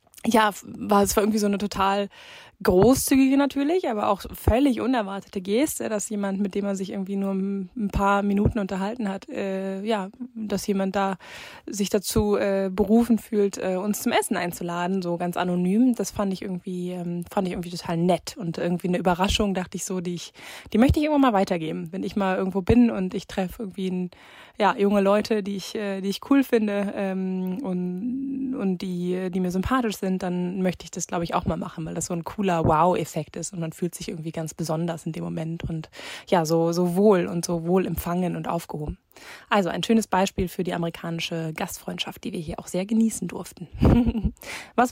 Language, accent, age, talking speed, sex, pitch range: German, German, 20-39, 205 wpm, female, 180-215 Hz